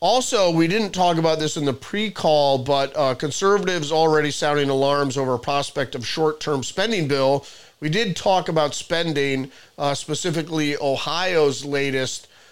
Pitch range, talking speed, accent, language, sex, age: 140-165 Hz, 150 wpm, American, English, male, 40-59